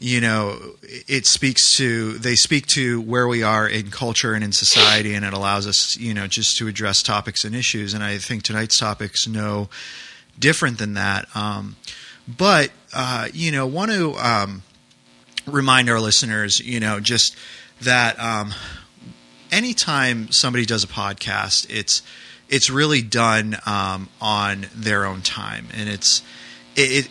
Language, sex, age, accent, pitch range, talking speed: English, male, 30-49, American, 105-120 Hz, 155 wpm